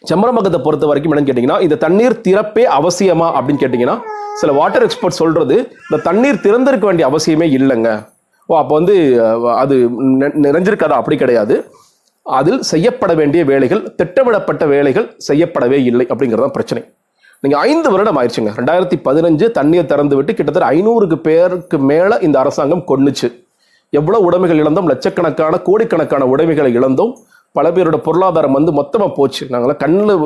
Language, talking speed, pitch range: Tamil, 110 wpm, 140-215 Hz